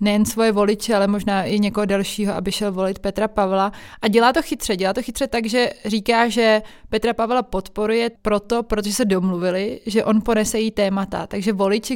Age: 20-39